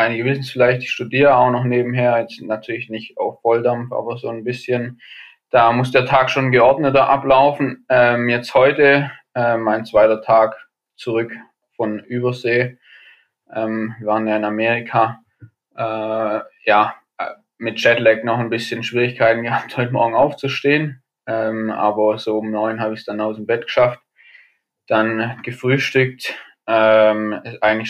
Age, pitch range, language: 10-29, 110-125 Hz, German